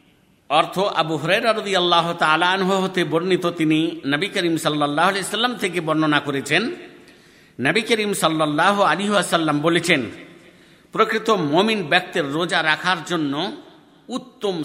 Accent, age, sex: native, 50-69, male